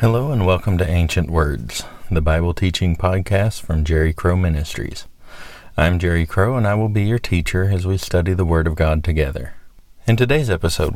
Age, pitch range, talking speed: 40-59, 80-95 Hz, 185 wpm